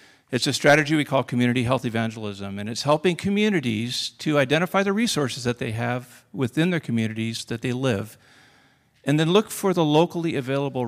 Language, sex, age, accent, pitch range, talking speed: English, male, 50-69, American, 115-155 Hz, 175 wpm